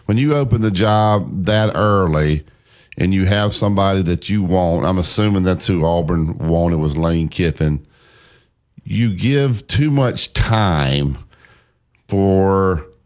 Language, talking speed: English, 135 wpm